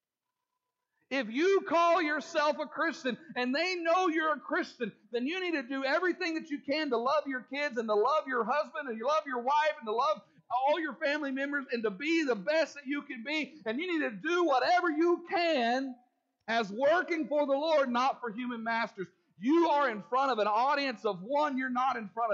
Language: English